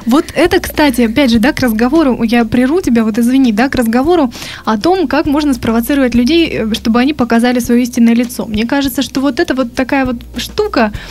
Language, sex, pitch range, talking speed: Russian, female, 230-270 Hz, 200 wpm